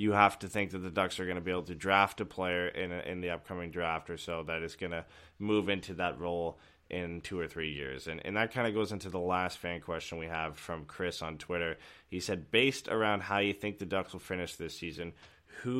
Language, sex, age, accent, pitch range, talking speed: English, male, 20-39, American, 85-100 Hz, 260 wpm